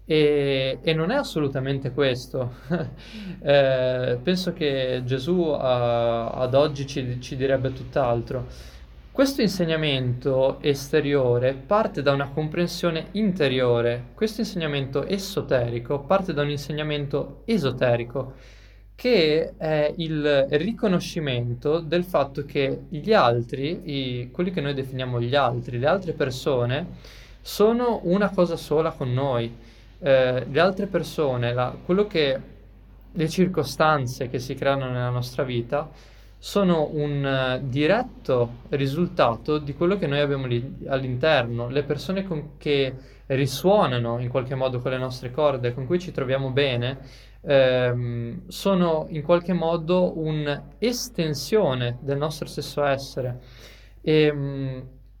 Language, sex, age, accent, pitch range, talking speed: Italian, male, 20-39, native, 125-160 Hz, 120 wpm